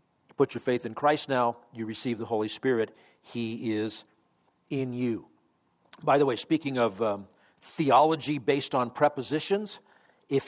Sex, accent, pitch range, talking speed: male, American, 115-150 Hz, 150 wpm